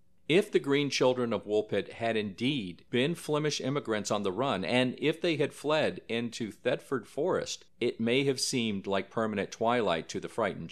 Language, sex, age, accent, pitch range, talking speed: English, male, 50-69, American, 100-125 Hz, 180 wpm